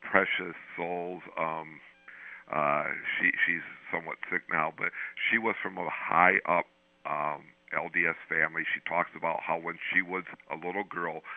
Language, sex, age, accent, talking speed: English, male, 60-79, American, 155 wpm